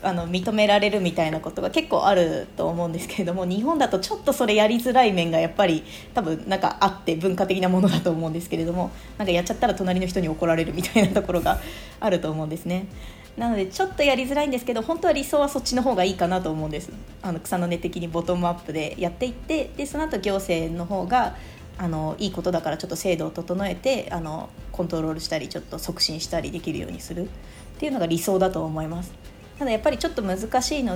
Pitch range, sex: 170-230 Hz, female